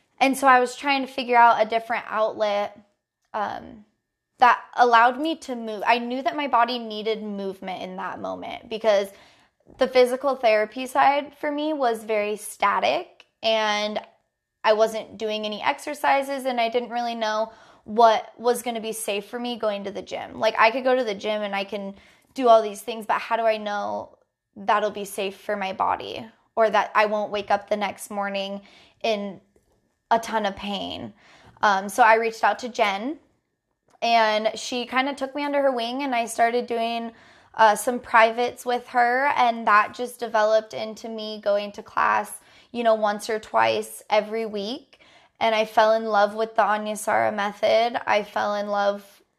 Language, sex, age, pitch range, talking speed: English, female, 10-29, 210-240 Hz, 185 wpm